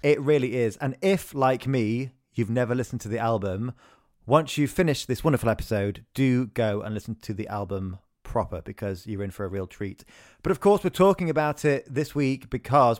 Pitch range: 105-135 Hz